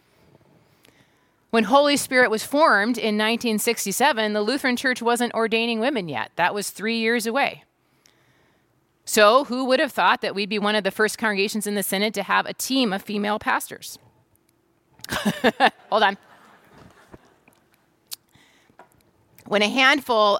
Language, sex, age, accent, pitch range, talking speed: English, female, 30-49, American, 210-265 Hz, 140 wpm